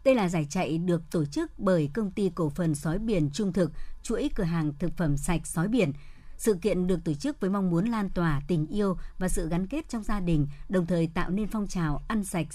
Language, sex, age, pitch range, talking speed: Vietnamese, male, 60-79, 165-210 Hz, 245 wpm